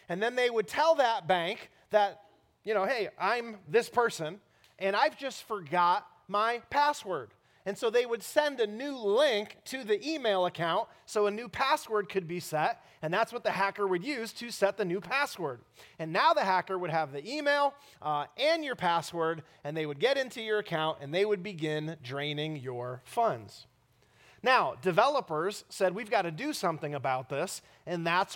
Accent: American